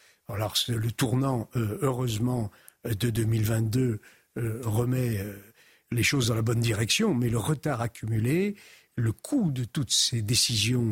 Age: 60-79